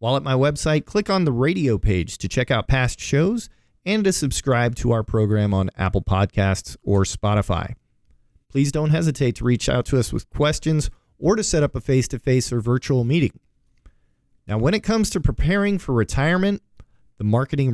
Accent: American